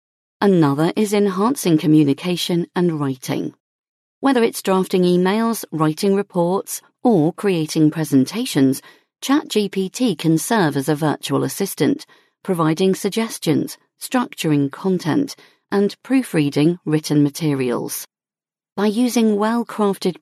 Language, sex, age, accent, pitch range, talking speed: English, female, 40-59, British, 155-215 Hz, 100 wpm